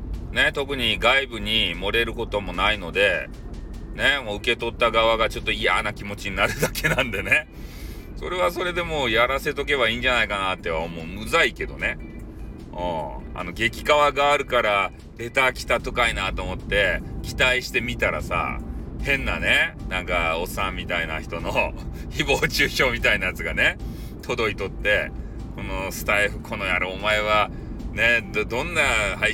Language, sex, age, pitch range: Japanese, male, 30-49, 85-125 Hz